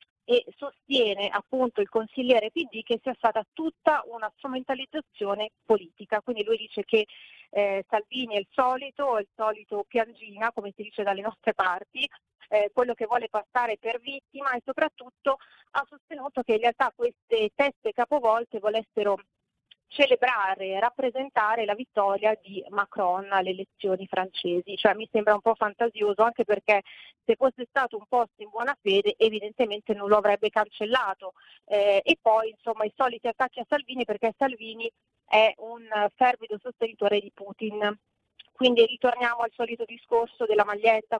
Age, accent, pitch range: 30-49, native, 210-245 Hz